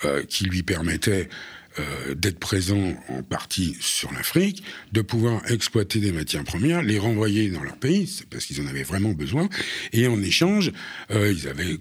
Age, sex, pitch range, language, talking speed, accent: 60-79, male, 90-140 Hz, French, 180 wpm, French